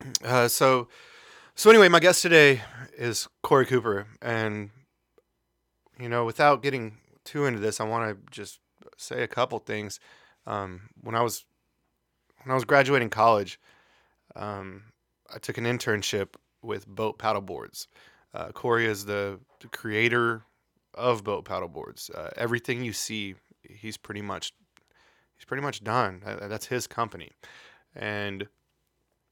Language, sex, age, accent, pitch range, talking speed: English, male, 20-39, American, 105-125 Hz, 140 wpm